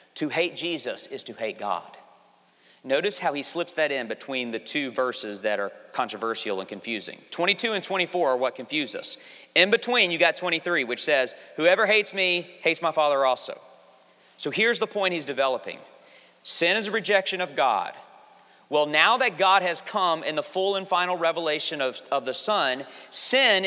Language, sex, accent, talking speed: English, male, American, 185 wpm